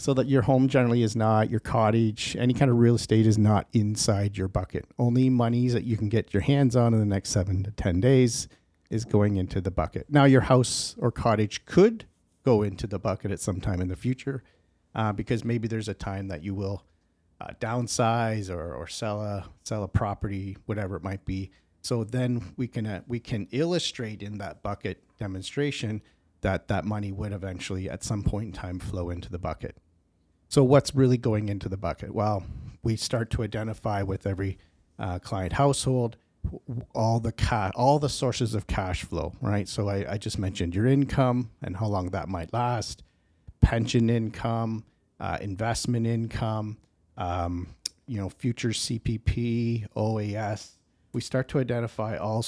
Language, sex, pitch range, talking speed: English, male, 95-120 Hz, 185 wpm